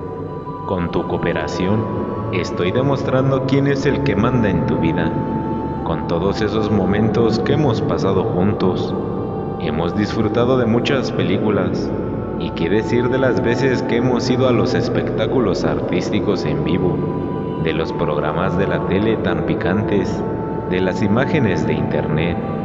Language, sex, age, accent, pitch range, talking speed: Spanish, male, 30-49, Mexican, 85-120 Hz, 145 wpm